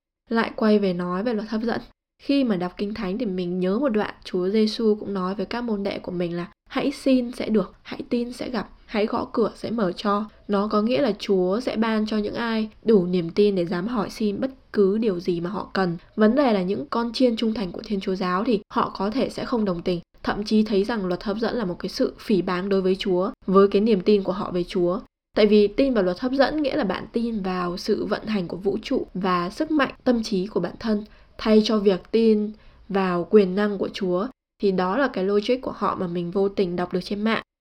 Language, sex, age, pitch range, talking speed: Vietnamese, female, 10-29, 185-225 Hz, 255 wpm